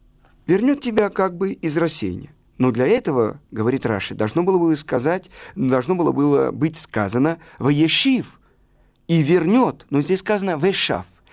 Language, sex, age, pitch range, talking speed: Russian, male, 50-69, 135-185 Hz, 145 wpm